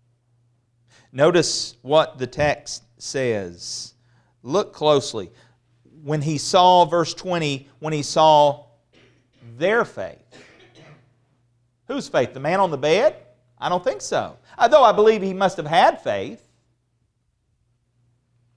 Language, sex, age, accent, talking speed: English, male, 40-59, American, 115 wpm